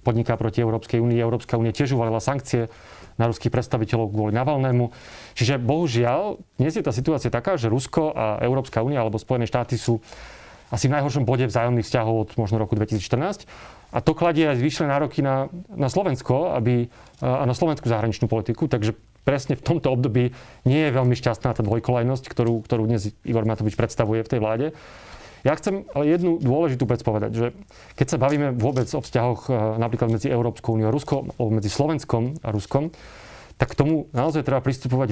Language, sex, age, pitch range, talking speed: Slovak, male, 30-49, 115-140 Hz, 180 wpm